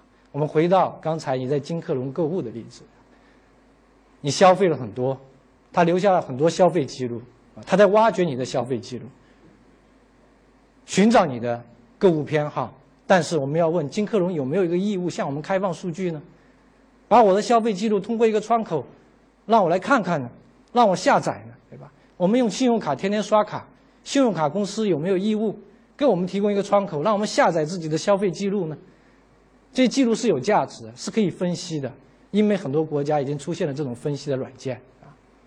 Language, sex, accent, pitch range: Chinese, male, native, 140-200 Hz